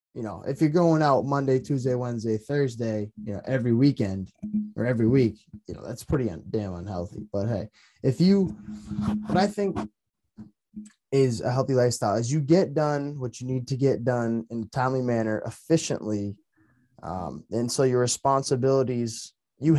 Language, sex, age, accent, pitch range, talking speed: English, male, 10-29, American, 110-145 Hz, 165 wpm